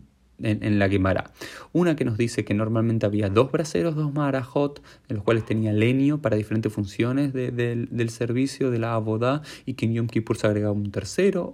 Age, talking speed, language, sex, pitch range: 20-39, 210 wpm, Spanish, male, 110-145 Hz